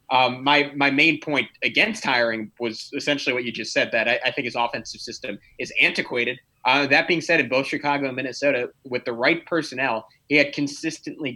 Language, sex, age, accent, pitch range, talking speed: English, male, 20-39, American, 125-150 Hz, 200 wpm